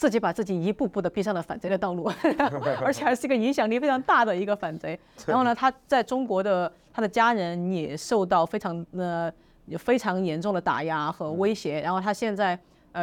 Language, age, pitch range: Chinese, 30-49, 170-235 Hz